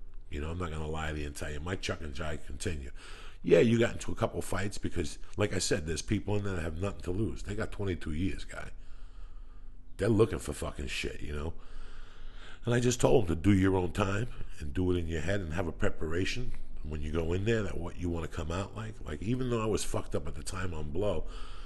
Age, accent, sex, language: 50-69, American, male, English